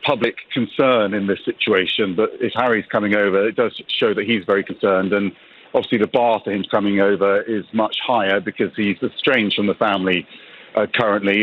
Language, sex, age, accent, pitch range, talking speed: English, male, 50-69, British, 105-125 Hz, 190 wpm